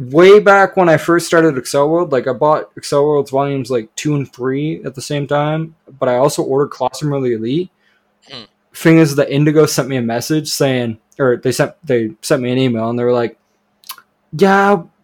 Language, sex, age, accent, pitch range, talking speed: English, male, 20-39, American, 115-155 Hz, 205 wpm